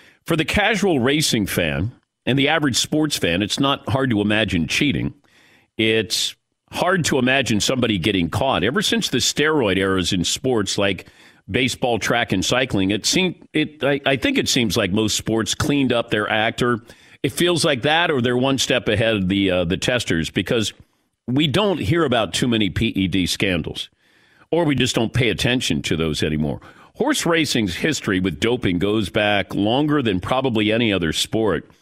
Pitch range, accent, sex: 105-140 Hz, American, male